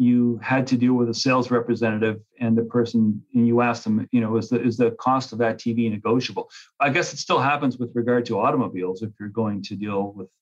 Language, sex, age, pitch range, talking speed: English, male, 40-59, 115-135 Hz, 235 wpm